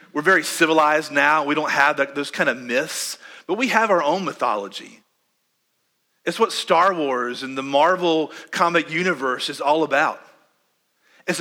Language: English